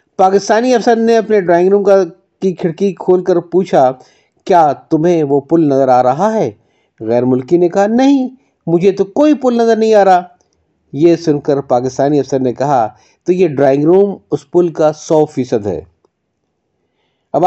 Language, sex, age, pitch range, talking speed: Urdu, male, 50-69, 165-215 Hz, 175 wpm